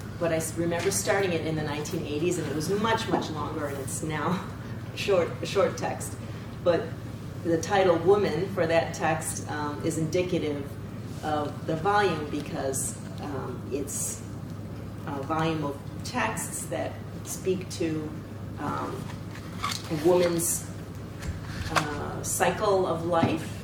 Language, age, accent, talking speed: English, 30-49, American, 130 wpm